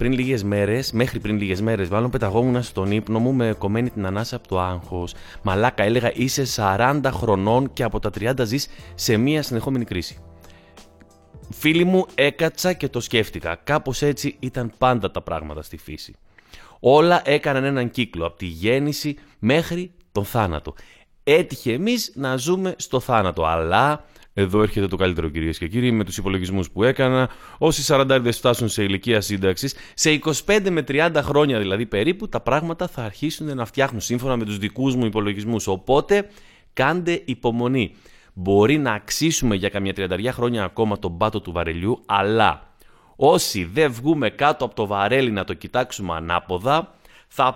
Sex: male